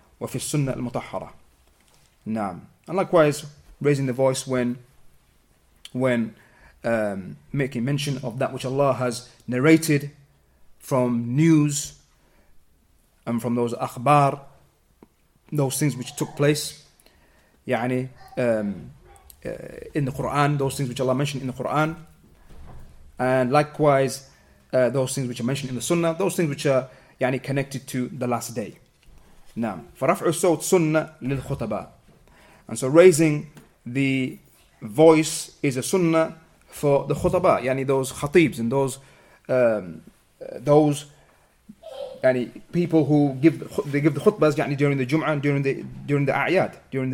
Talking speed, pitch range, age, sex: 130 wpm, 125-150 Hz, 30-49, male